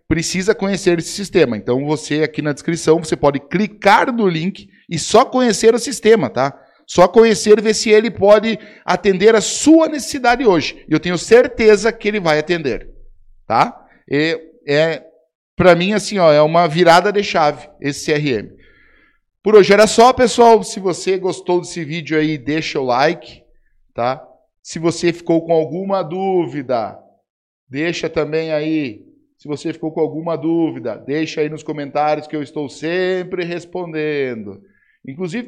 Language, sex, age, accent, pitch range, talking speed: Portuguese, male, 50-69, Brazilian, 155-210 Hz, 155 wpm